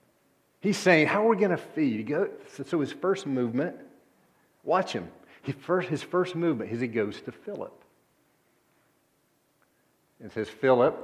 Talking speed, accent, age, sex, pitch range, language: 140 wpm, American, 50-69, male, 105-145 Hz, English